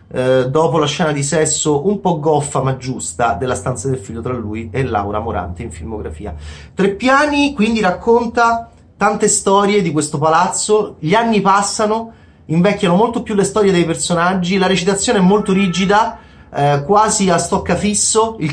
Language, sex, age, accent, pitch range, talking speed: Italian, male, 30-49, native, 145-195 Hz, 160 wpm